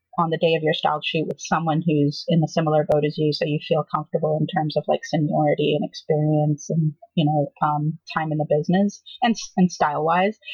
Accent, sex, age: American, female, 30-49